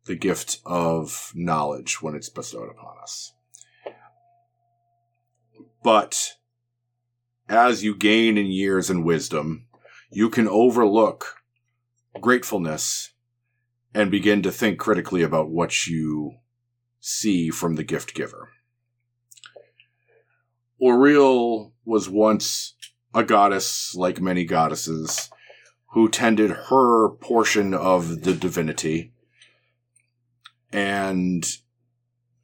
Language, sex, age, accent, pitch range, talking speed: English, male, 40-59, American, 90-120 Hz, 95 wpm